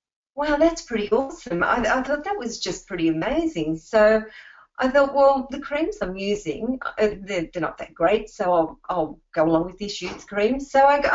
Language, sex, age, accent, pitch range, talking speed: English, female, 40-59, Australian, 175-220 Hz, 200 wpm